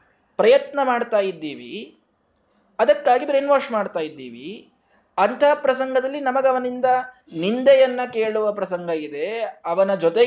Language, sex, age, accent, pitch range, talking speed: Kannada, male, 20-39, native, 140-215 Hz, 100 wpm